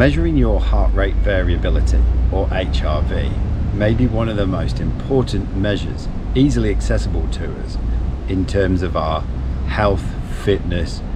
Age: 40-59